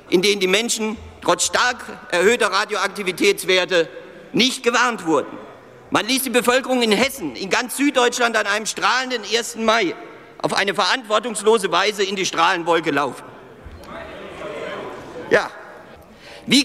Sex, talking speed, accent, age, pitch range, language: male, 125 wpm, German, 50-69, 200-255 Hz, German